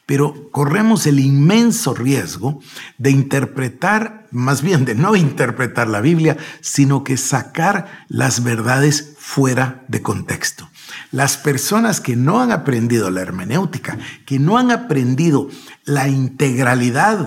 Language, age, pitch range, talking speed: Spanish, 50-69, 130-175 Hz, 125 wpm